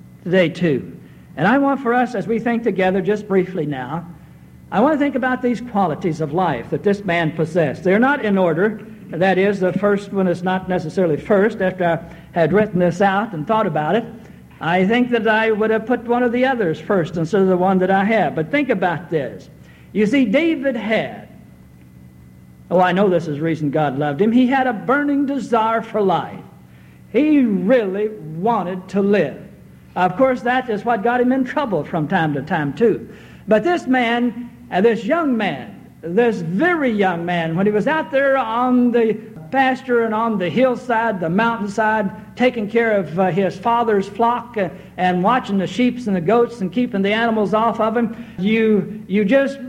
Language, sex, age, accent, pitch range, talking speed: English, male, 60-79, American, 185-245 Hz, 195 wpm